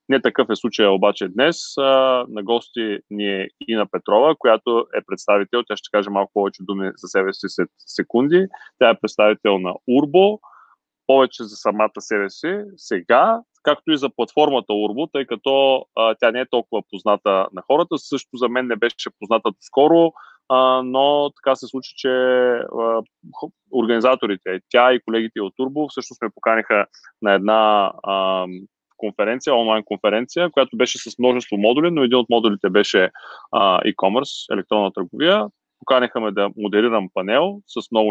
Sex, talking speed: male, 155 wpm